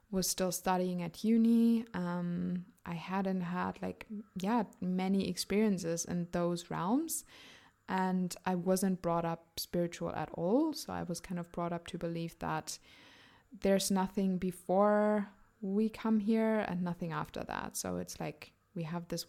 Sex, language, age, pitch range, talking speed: female, English, 20-39, 170-205 Hz, 155 wpm